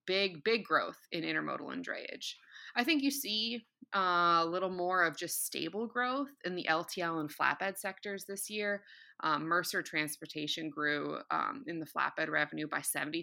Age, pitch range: 20-39, 160-210 Hz